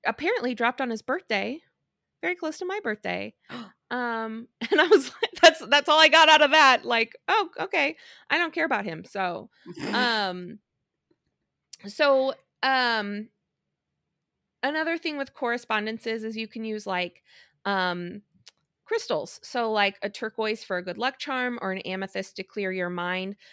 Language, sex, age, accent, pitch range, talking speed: English, female, 20-39, American, 180-235 Hz, 160 wpm